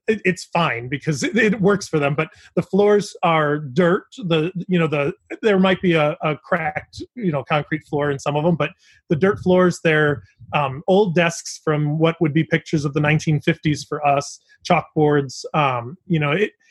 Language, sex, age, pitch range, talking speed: English, male, 30-49, 145-175 Hz, 190 wpm